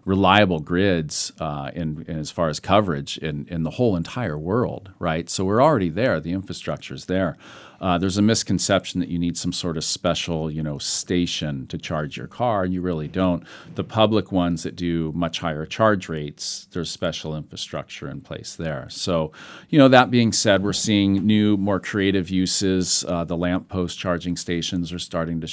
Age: 40-59